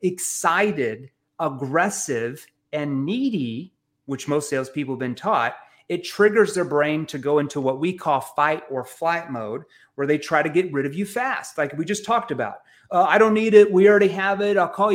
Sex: male